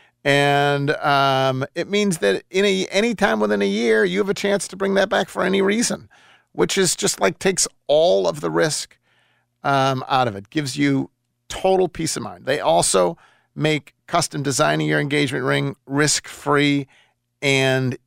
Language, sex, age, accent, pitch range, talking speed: English, male, 40-59, American, 120-155 Hz, 170 wpm